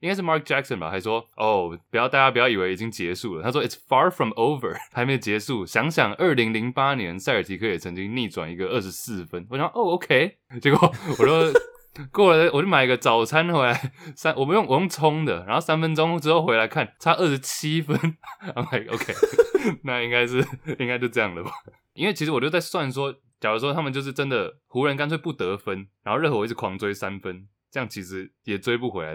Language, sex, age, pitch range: English, male, 20-39, 105-150 Hz